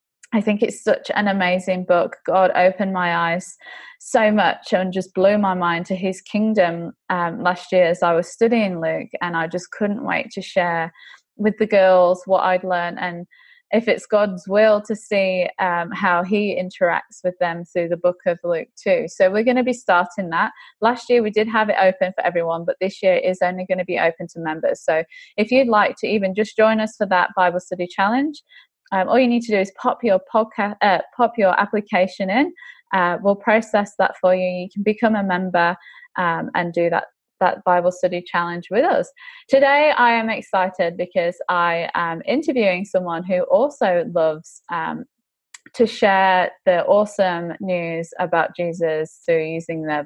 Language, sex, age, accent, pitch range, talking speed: English, female, 20-39, British, 175-220 Hz, 190 wpm